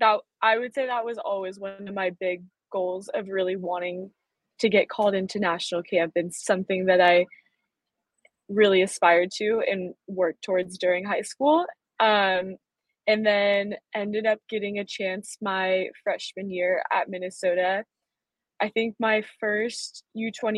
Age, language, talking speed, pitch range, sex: 20-39, English, 150 wpm, 190-215 Hz, female